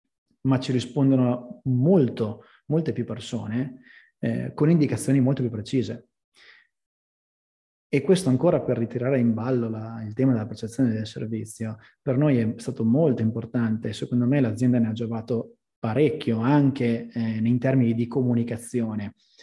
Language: Italian